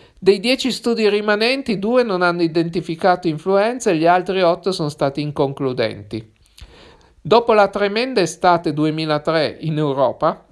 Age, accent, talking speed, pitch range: 50-69, native, 130 wpm, 150-195 Hz